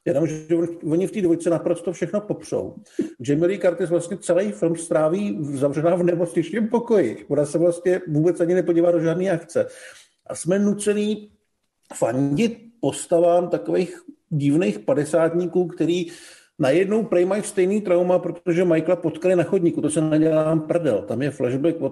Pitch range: 155-185 Hz